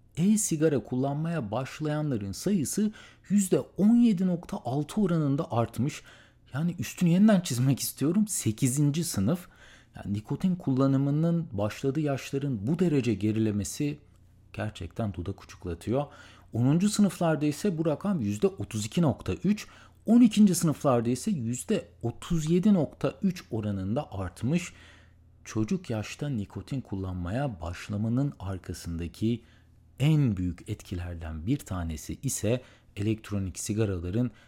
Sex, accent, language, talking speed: male, native, Turkish, 90 wpm